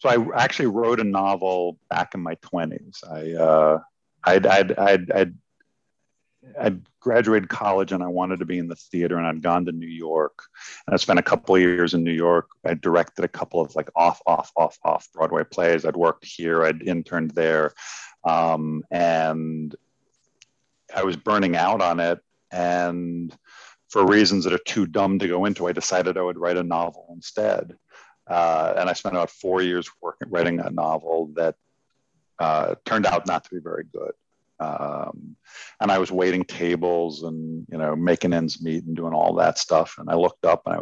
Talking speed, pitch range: 190 wpm, 80-90 Hz